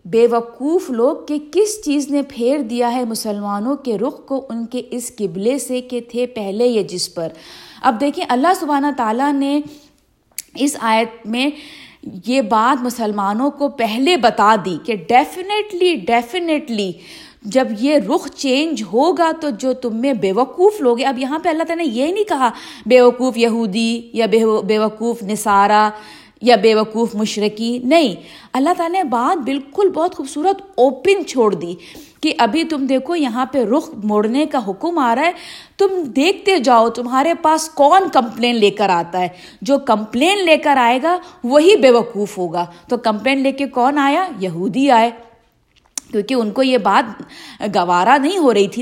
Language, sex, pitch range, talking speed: Urdu, female, 225-295 Hz, 170 wpm